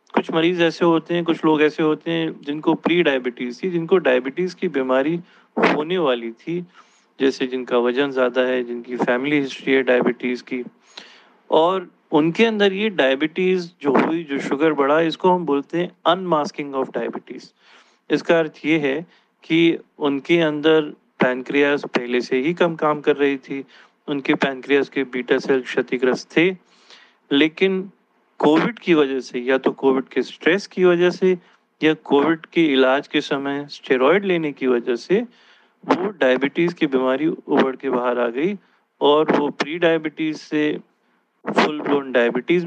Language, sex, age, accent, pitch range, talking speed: Hindi, male, 30-49, native, 130-165 Hz, 155 wpm